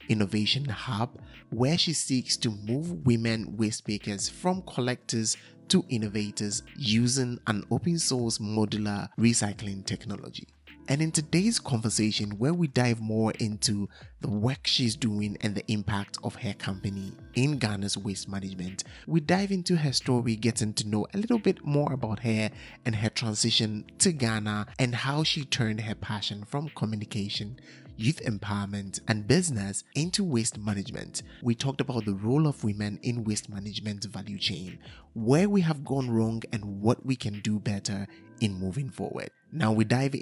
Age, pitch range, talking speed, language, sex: 30-49, 105-130 Hz, 160 wpm, English, male